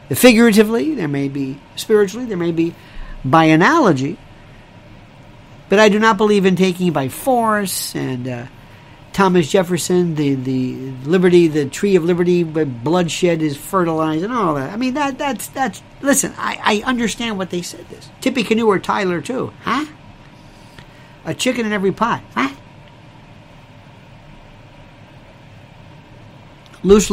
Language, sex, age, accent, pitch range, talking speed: English, male, 50-69, American, 135-190 Hz, 140 wpm